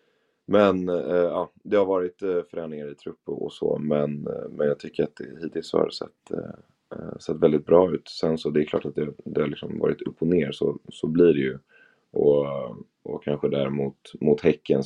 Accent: native